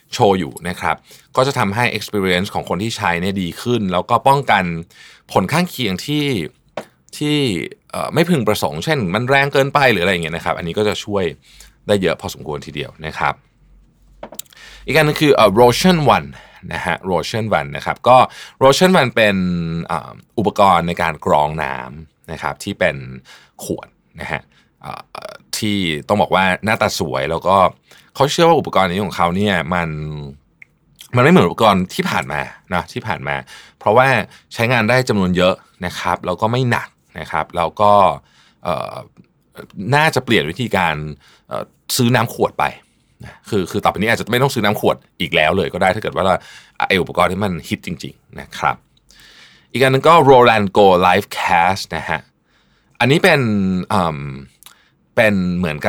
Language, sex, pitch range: Thai, male, 85-125 Hz